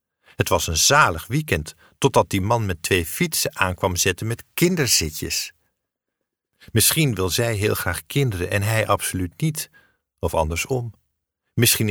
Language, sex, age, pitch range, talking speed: Dutch, male, 50-69, 85-120 Hz, 140 wpm